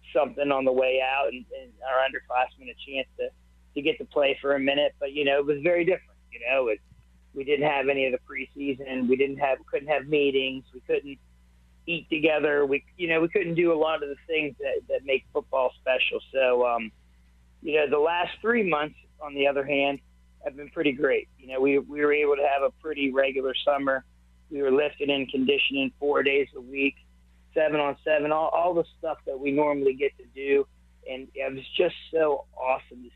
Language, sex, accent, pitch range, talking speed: English, male, American, 130-155 Hz, 215 wpm